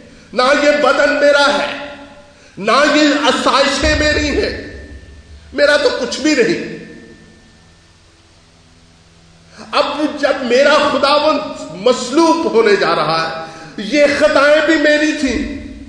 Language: English